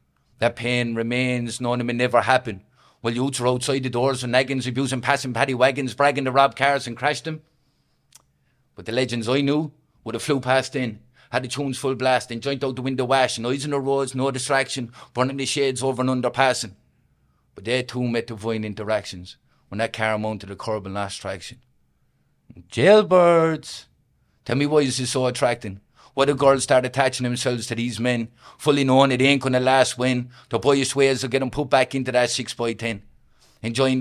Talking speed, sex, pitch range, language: 205 wpm, male, 120-135 Hz, English